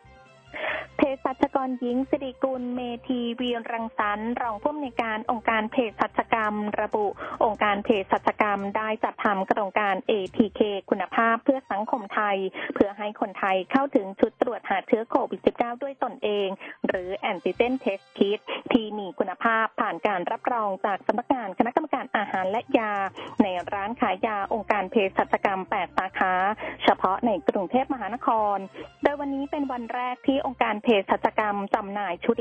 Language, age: Thai, 20-39